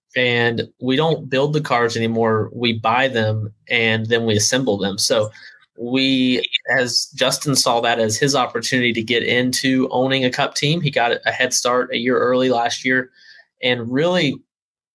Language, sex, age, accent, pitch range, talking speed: English, male, 20-39, American, 120-140 Hz, 175 wpm